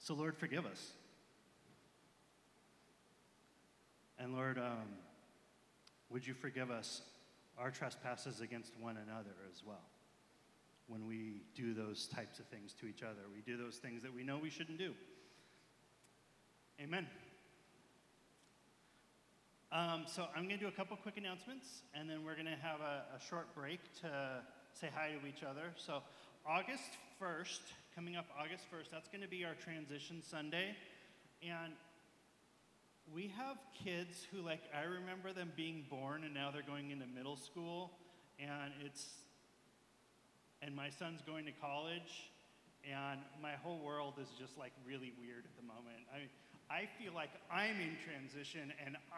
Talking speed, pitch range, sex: 155 wpm, 130-170 Hz, male